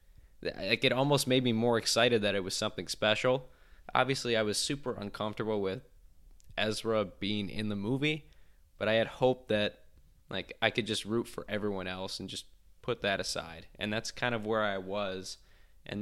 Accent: American